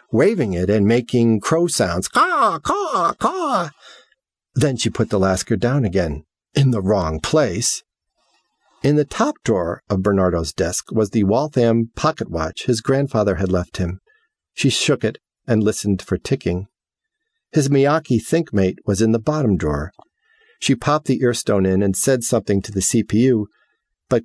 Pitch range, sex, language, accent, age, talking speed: 95-145 Hz, male, English, American, 50-69, 160 wpm